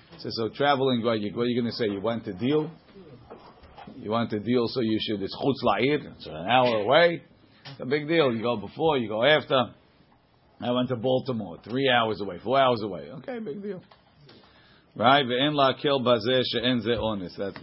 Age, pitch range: 50-69, 110-130 Hz